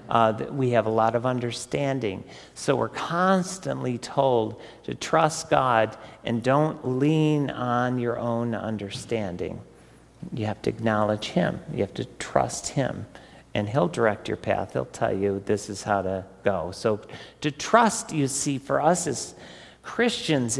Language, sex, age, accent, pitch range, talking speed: English, male, 50-69, American, 110-145 Hz, 155 wpm